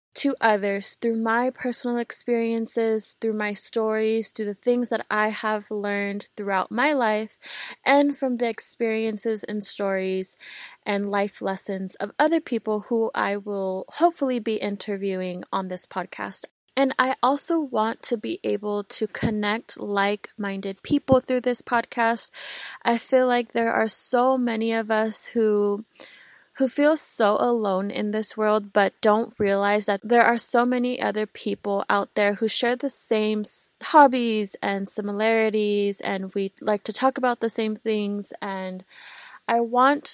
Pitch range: 205-240 Hz